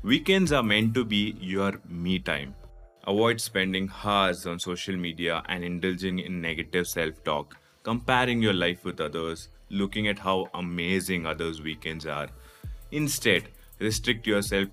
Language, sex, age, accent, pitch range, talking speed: English, male, 20-39, Indian, 85-110 Hz, 140 wpm